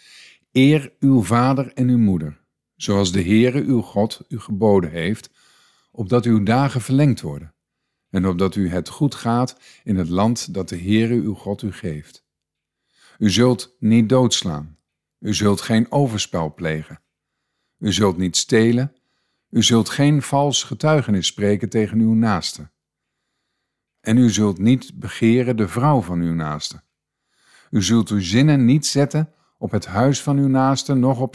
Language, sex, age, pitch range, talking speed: Dutch, male, 50-69, 95-125 Hz, 155 wpm